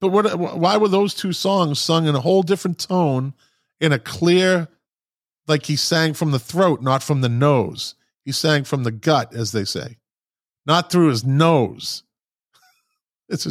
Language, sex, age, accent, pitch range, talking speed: English, male, 40-59, American, 110-160 Hz, 170 wpm